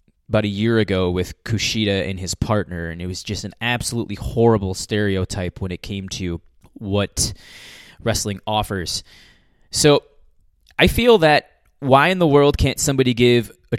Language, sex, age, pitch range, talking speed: English, male, 20-39, 95-125 Hz, 155 wpm